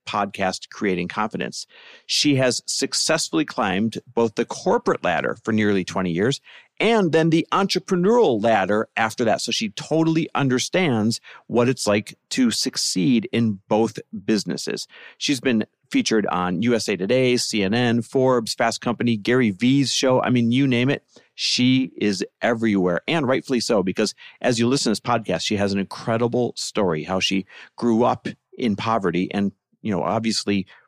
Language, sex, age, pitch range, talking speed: English, male, 40-59, 100-130 Hz, 155 wpm